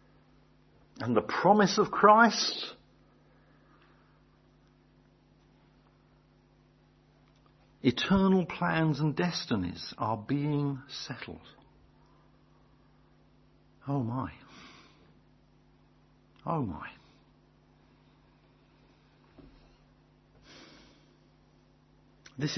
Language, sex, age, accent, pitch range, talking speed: English, male, 50-69, British, 110-140 Hz, 45 wpm